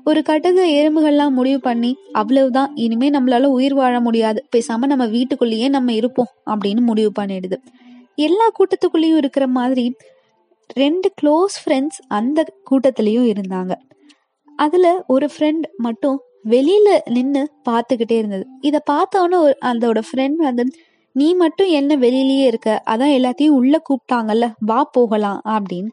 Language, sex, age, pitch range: Tamil, female, 20-39, 230-300 Hz